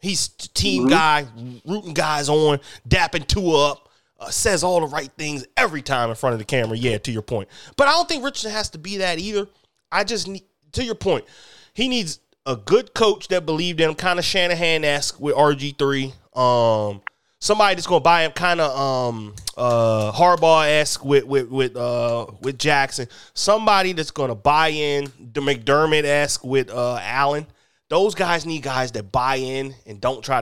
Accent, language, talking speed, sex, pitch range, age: American, English, 185 wpm, male, 125-175 Hz, 30-49